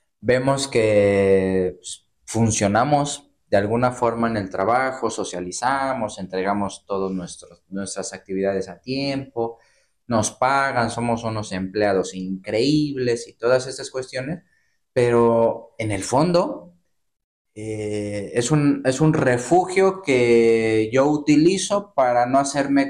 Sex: male